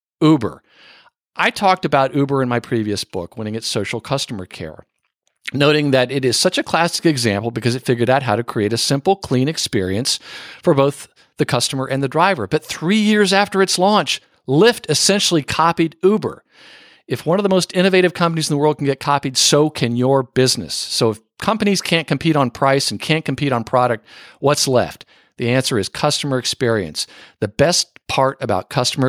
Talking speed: 190 wpm